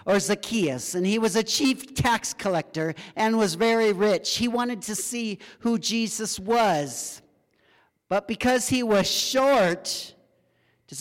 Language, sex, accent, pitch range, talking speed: English, male, American, 180-240 Hz, 140 wpm